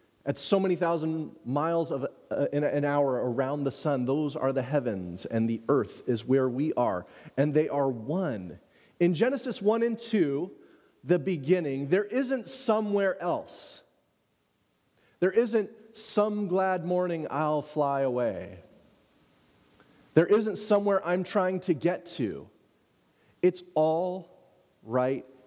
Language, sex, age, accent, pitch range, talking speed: English, male, 30-49, American, 145-195 Hz, 135 wpm